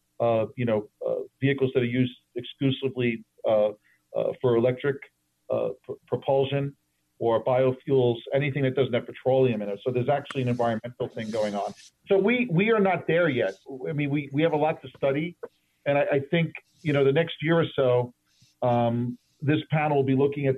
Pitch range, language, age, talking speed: 125-145 Hz, English, 40-59, 195 wpm